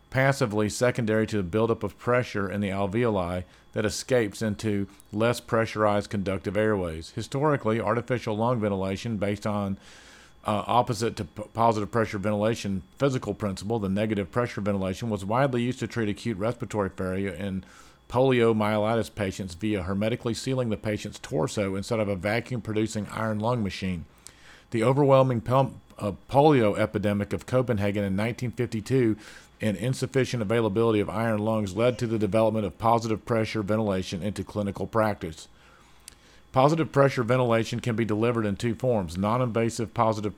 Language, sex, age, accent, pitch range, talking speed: English, male, 50-69, American, 100-120 Hz, 145 wpm